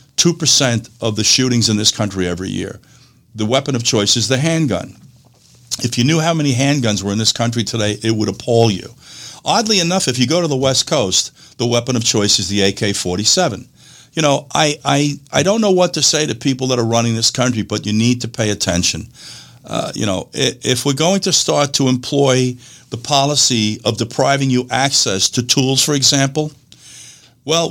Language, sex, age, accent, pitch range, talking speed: English, male, 50-69, American, 115-145 Hz, 195 wpm